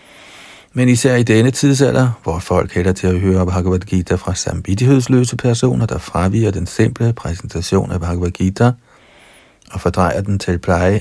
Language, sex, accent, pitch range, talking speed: Danish, male, native, 90-115 Hz, 160 wpm